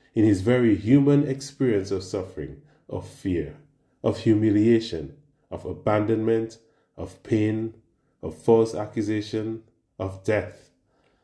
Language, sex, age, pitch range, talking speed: English, male, 30-49, 95-130 Hz, 105 wpm